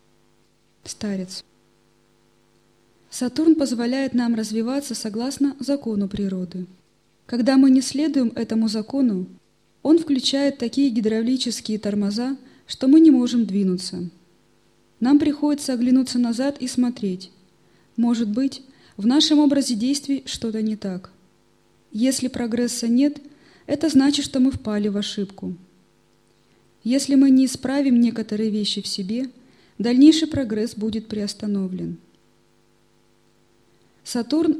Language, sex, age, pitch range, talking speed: Russian, female, 20-39, 190-265 Hz, 110 wpm